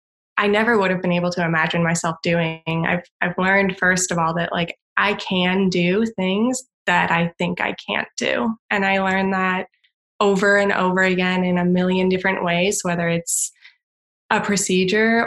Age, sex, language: 20-39, female, English